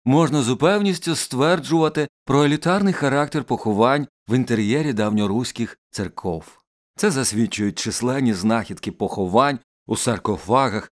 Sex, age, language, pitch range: male, 50-69, Ukrainian, 105-145 Hz